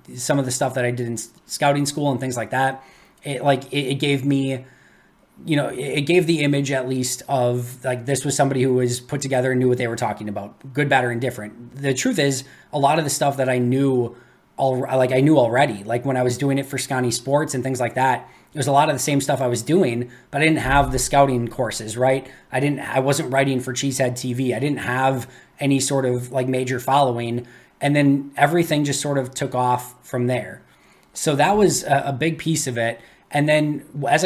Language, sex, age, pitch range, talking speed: English, male, 20-39, 125-145 Hz, 240 wpm